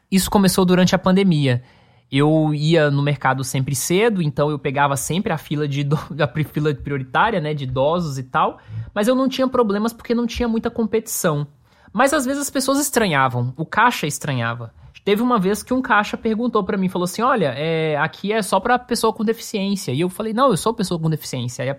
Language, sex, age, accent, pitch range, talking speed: Portuguese, male, 20-39, Brazilian, 150-225 Hz, 210 wpm